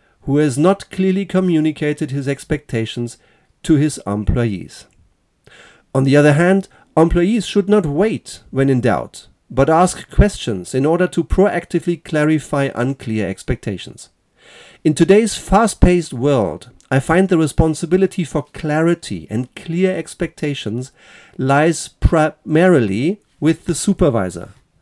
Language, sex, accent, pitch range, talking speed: German, male, German, 125-180 Hz, 120 wpm